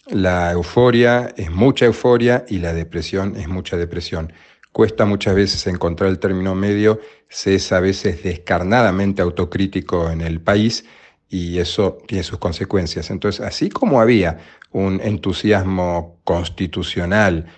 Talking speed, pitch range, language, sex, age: 135 wpm, 90-100 Hz, Spanish, male, 40-59